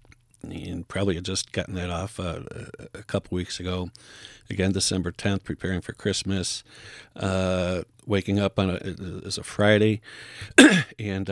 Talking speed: 135 wpm